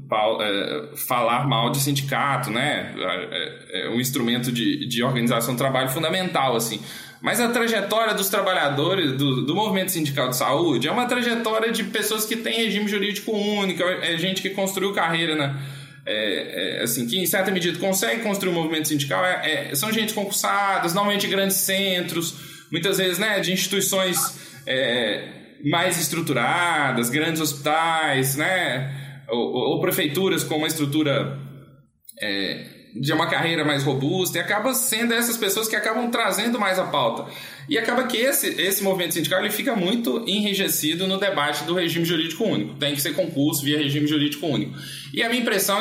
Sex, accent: male, Brazilian